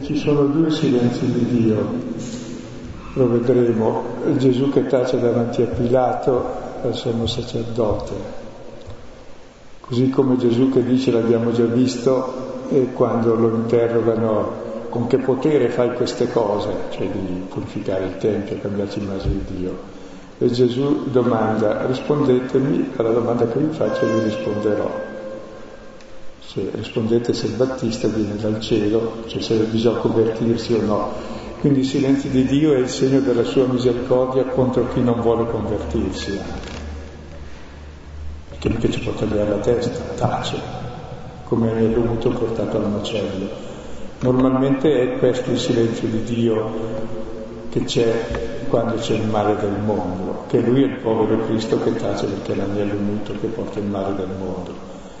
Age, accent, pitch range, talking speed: 50-69, native, 105-125 Hz, 145 wpm